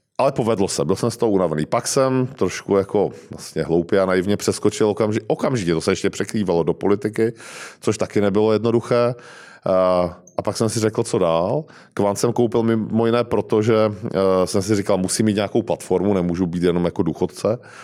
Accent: native